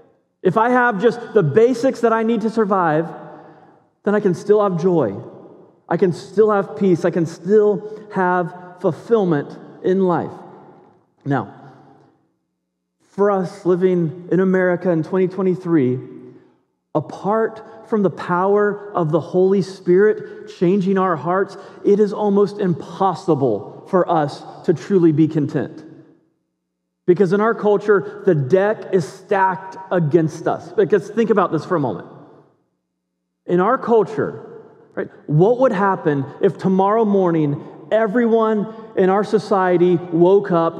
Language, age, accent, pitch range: English, 30-49, American, 175-230 Hz